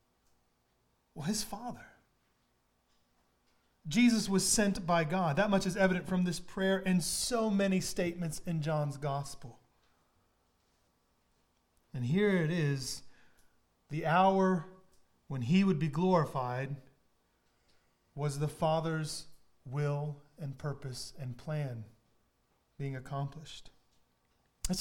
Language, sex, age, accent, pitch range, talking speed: English, male, 30-49, American, 145-200 Hz, 105 wpm